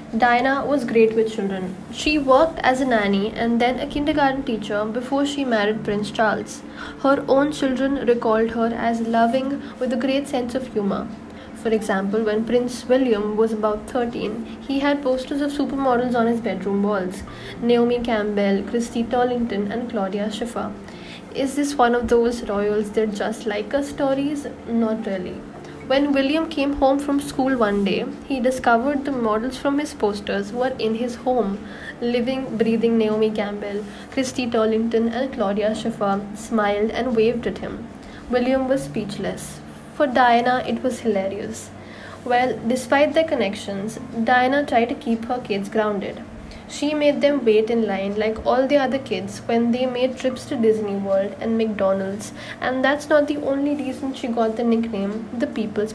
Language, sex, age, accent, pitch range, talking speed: English, female, 10-29, Indian, 220-265 Hz, 165 wpm